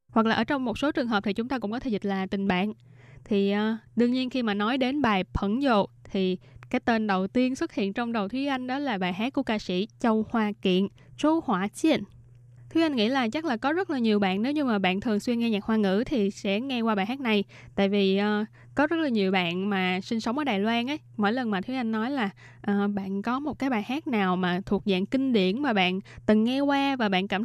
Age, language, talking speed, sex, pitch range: 10-29, Vietnamese, 270 wpm, female, 195-255 Hz